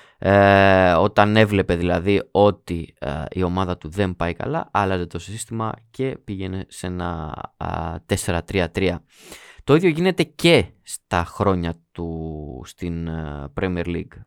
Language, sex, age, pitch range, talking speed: Greek, male, 20-39, 85-110 Hz, 135 wpm